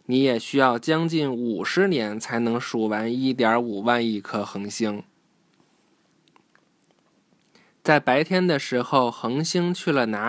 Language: Chinese